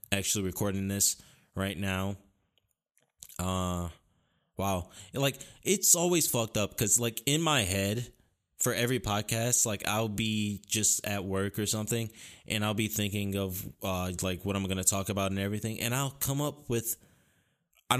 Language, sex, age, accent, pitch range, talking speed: English, male, 20-39, American, 100-125 Hz, 165 wpm